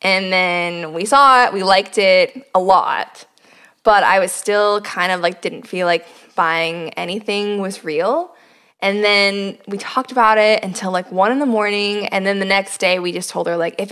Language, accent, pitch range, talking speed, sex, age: English, American, 180-225 Hz, 205 wpm, female, 20-39